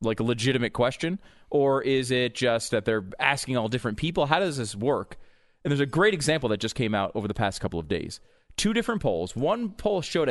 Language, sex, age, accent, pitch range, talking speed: English, male, 30-49, American, 100-150 Hz, 225 wpm